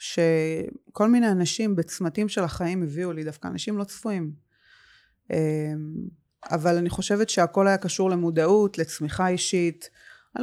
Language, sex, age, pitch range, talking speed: Hebrew, female, 20-39, 160-190 Hz, 125 wpm